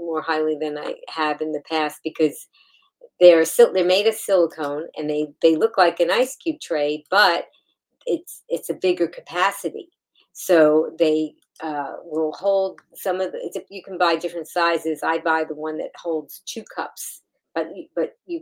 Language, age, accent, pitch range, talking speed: English, 40-59, American, 155-185 Hz, 185 wpm